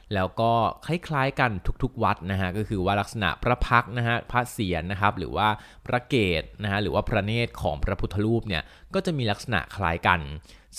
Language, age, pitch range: Thai, 20-39, 90-115 Hz